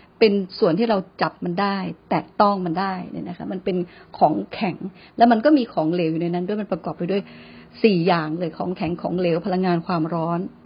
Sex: female